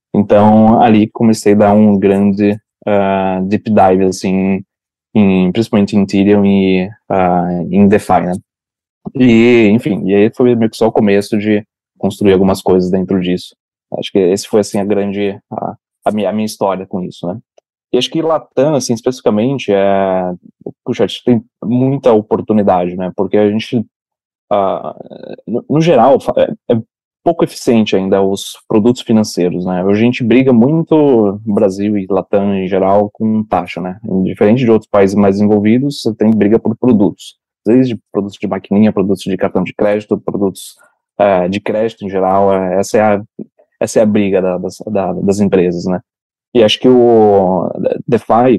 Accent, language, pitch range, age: Brazilian, Portuguese, 95-115 Hz, 20-39